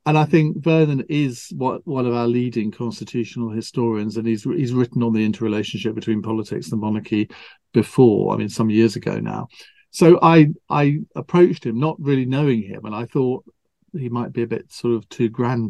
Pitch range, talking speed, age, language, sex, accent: 115-160 Hz, 200 wpm, 40-59, English, male, British